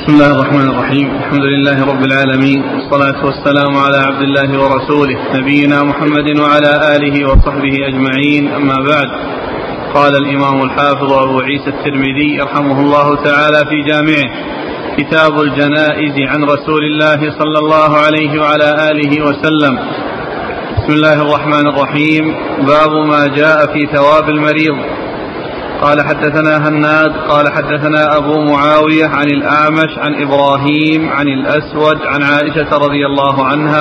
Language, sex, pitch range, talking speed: Arabic, male, 140-155 Hz, 130 wpm